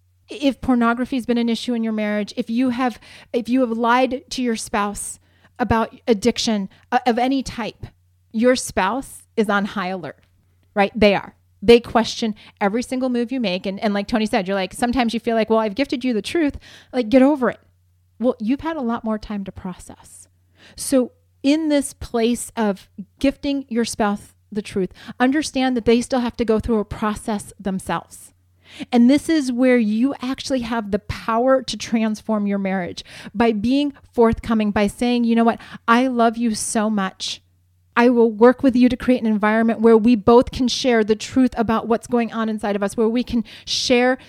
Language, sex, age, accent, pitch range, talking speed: English, female, 30-49, American, 210-250 Hz, 195 wpm